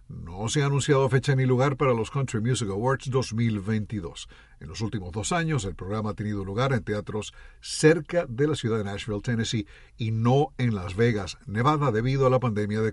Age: 60-79